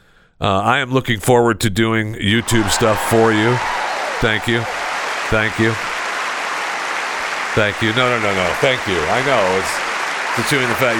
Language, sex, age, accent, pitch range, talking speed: English, male, 50-69, American, 85-120 Hz, 165 wpm